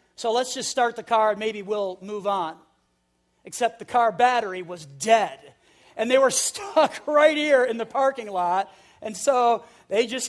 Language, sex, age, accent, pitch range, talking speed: English, male, 40-59, American, 185-260 Hz, 180 wpm